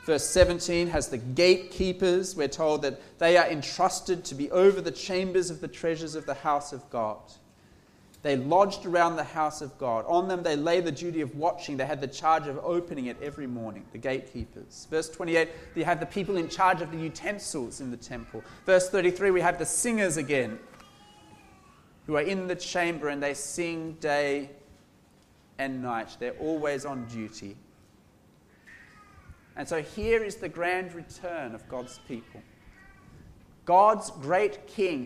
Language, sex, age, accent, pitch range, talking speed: English, male, 30-49, Australian, 130-185 Hz, 170 wpm